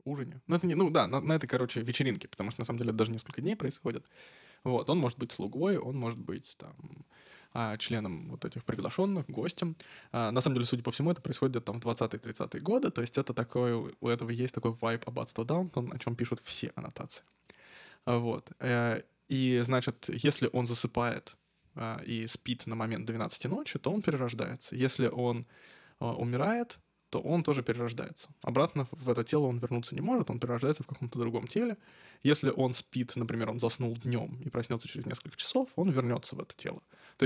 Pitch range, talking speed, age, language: 120-155 Hz, 190 wpm, 20-39, Russian